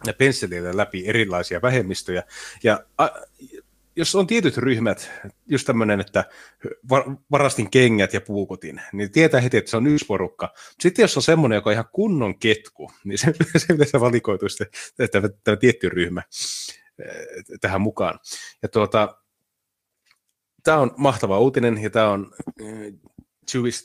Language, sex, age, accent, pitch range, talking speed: Finnish, male, 30-49, native, 100-135 Hz, 140 wpm